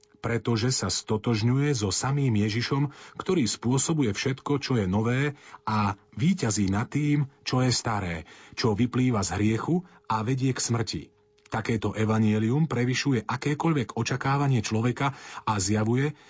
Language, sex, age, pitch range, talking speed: Slovak, male, 40-59, 105-140 Hz, 130 wpm